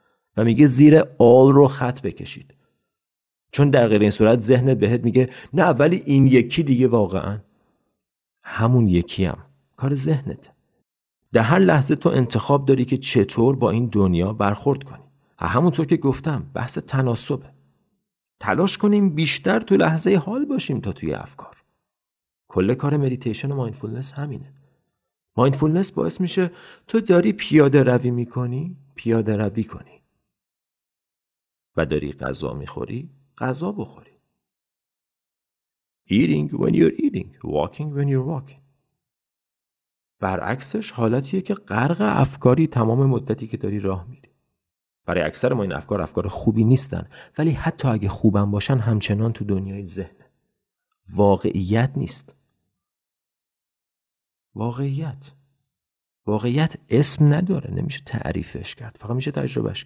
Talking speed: 125 wpm